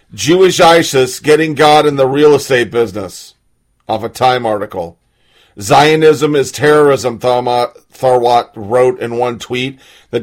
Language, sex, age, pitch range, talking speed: English, male, 40-59, 130-185 Hz, 130 wpm